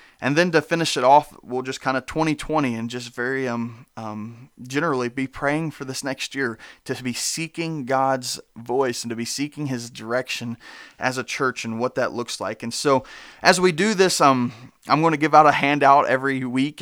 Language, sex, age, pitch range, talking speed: English, male, 30-49, 120-135 Hz, 205 wpm